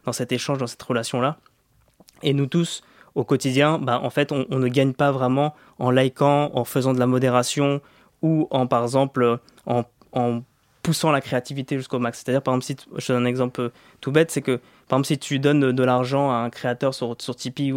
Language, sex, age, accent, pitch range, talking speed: French, male, 20-39, French, 120-140 Hz, 220 wpm